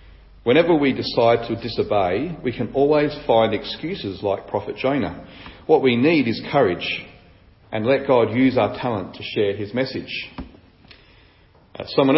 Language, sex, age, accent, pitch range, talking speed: English, male, 40-59, Australian, 100-130 Hz, 145 wpm